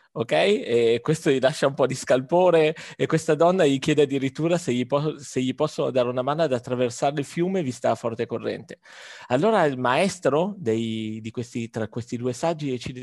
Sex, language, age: male, Italian, 30-49